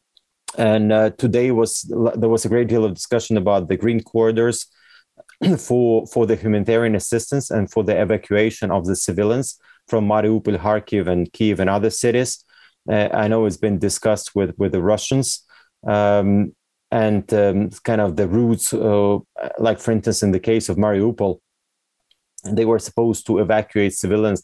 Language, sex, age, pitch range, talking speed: English, male, 30-49, 100-115 Hz, 165 wpm